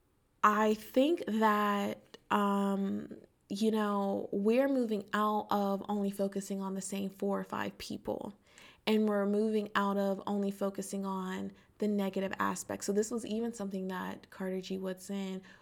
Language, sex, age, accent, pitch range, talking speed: English, female, 20-39, American, 195-215 Hz, 150 wpm